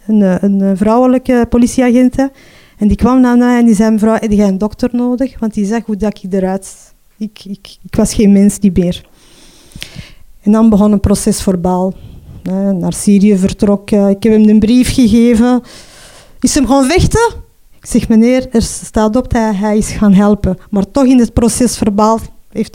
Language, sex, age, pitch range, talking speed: Dutch, female, 20-39, 195-235 Hz, 195 wpm